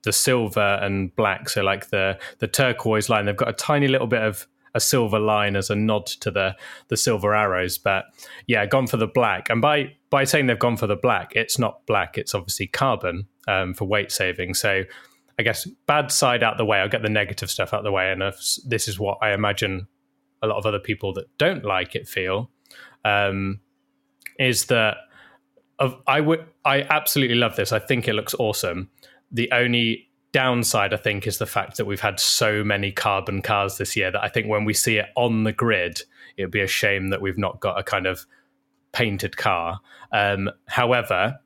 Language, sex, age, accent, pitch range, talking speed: English, male, 20-39, British, 100-120 Hz, 205 wpm